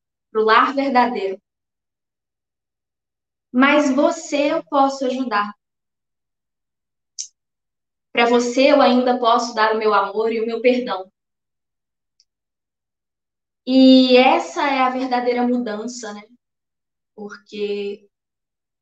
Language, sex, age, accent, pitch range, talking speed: Portuguese, female, 10-29, Brazilian, 225-265 Hz, 95 wpm